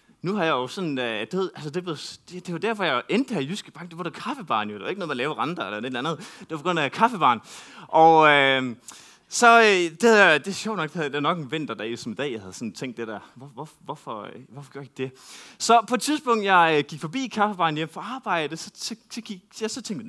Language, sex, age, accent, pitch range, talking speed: Danish, male, 20-39, native, 150-200 Hz, 270 wpm